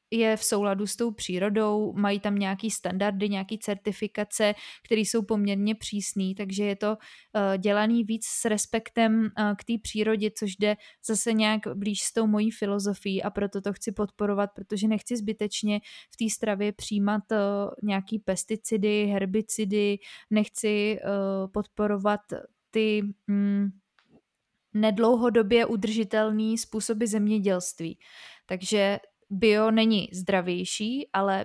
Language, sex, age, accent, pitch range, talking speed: Czech, female, 20-39, native, 195-215 Hz, 130 wpm